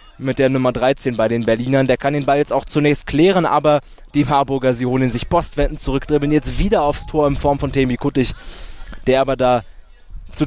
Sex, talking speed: male, 205 wpm